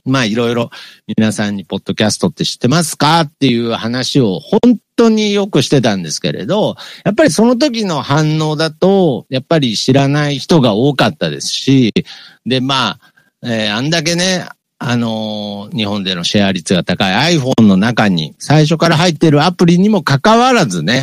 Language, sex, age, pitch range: Japanese, male, 50-69, 110-175 Hz